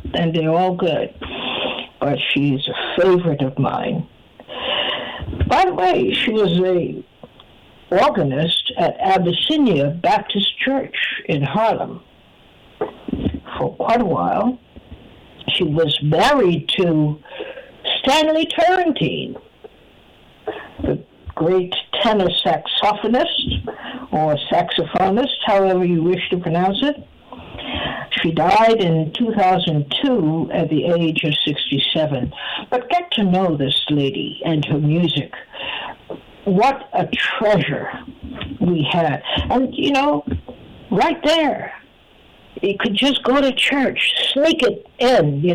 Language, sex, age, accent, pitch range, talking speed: English, female, 60-79, American, 155-250 Hz, 110 wpm